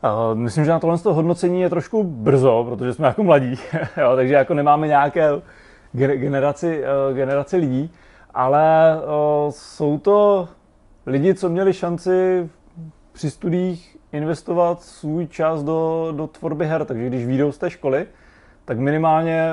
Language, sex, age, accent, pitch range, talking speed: Czech, male, 30-49, native, 130-160 Hz, 145 wpm